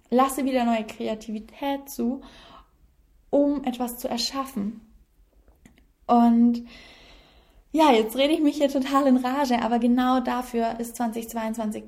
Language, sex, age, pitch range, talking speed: German, female, 10-29, 215-245 Hz, 120 wpm